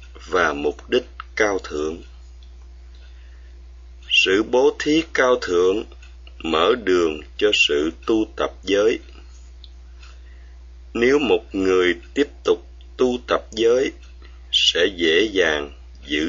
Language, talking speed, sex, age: Vietnamese, 105 wpm, male, 30-49